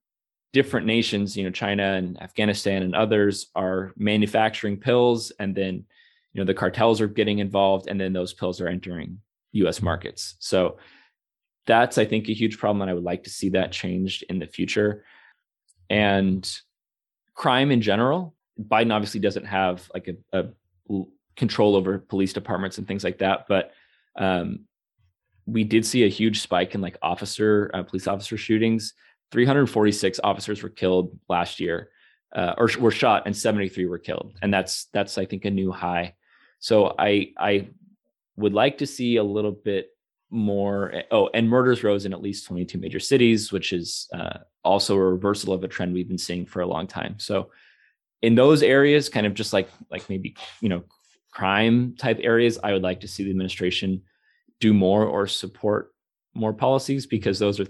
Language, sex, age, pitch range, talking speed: English, male, 20-39, 95-110 Hz, 180 wpm